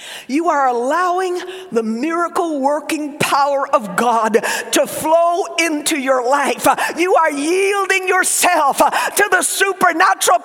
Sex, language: female, English